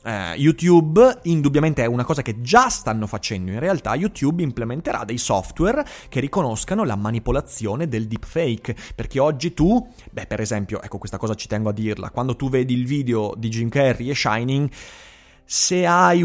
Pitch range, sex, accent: 110-150 Hz, male, native